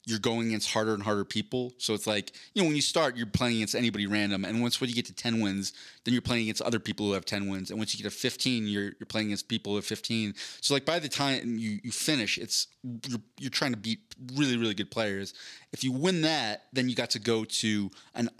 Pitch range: 105-130 Hz